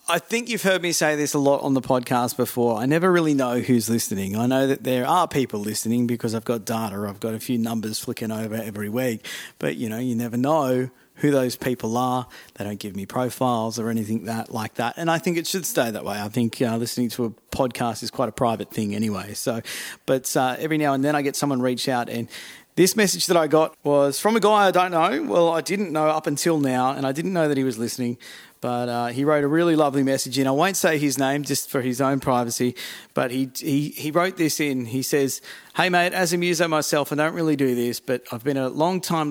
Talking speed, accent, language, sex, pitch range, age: 255 wpm, Australian, English, male, 120-155 Hz, 30-49